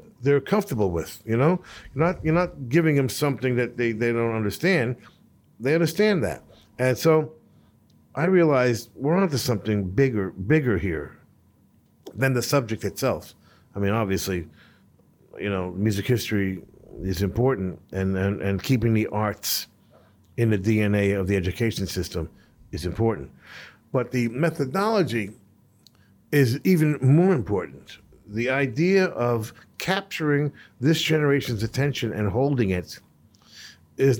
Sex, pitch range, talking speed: male, 100-130 Hz, 135 wpm